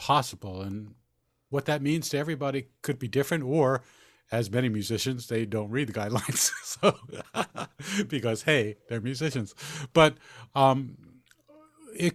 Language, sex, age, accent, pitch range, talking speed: English, male, 50-69, American, 110-145 Hz, 135 wpm